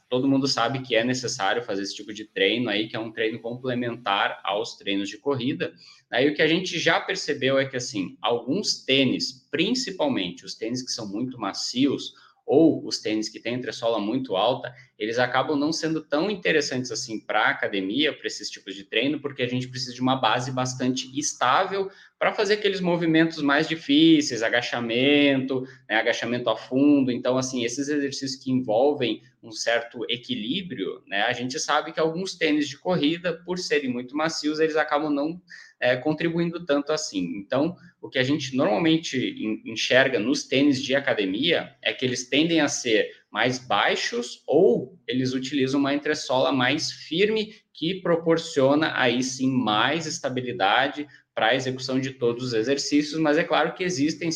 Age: 20-39